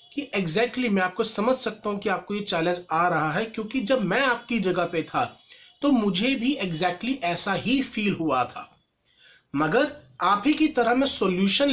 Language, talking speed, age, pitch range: Hindi, 200 wpm, 30-49, 180-245 Hz